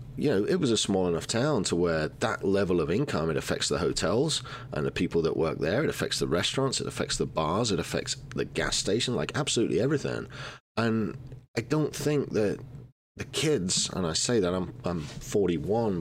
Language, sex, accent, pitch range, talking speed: English, male, British, 90-135 Hz, 200 wpm